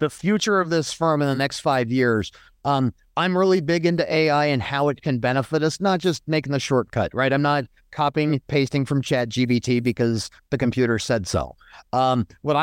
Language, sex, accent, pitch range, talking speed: English, male, American, 120-150 Hz, 200 wpm